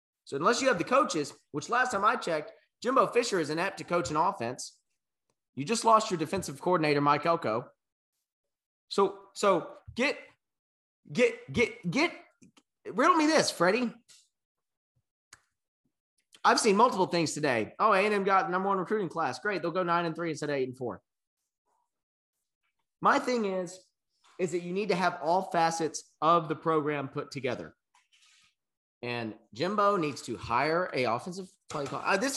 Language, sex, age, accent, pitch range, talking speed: English, male, 30-49, American, 160-210 Hz, 160 wpm